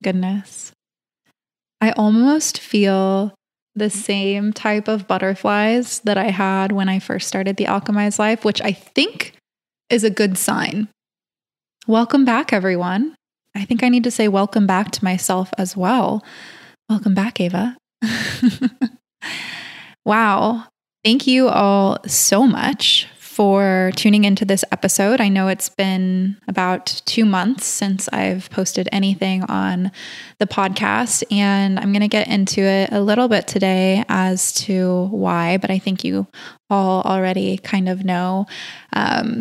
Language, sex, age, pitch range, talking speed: English, female, 20-39, 190-220 Hz, 140 wpm